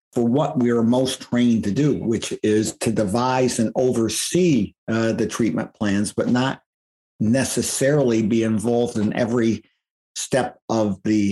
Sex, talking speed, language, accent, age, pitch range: male, 150 wpm, English, American, 50-69, 110-130 Hz